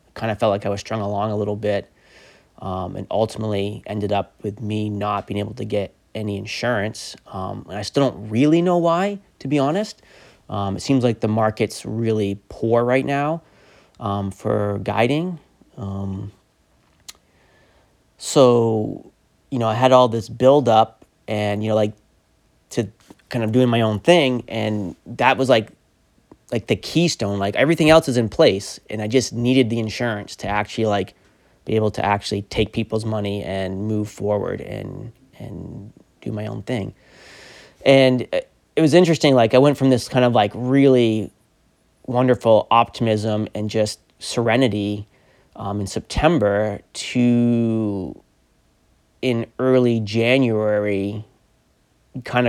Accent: American